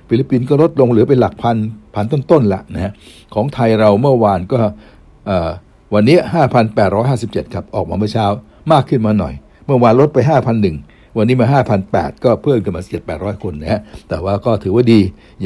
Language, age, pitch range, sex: Thai, 60-79, 95-120 Hz, male